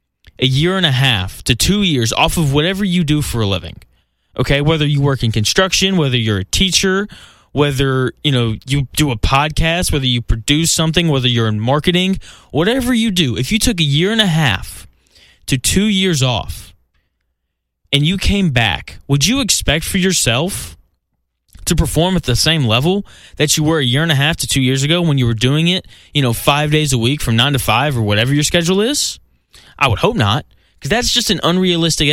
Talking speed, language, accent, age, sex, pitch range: 210 wpm, English, American, 10-29, male, 110-160 Hz